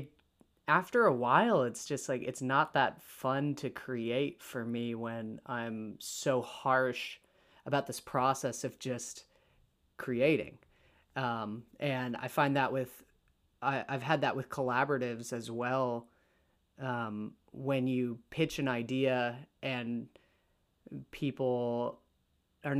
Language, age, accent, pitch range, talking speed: English, 30-49, American, 120-140 Hz, 125 wpm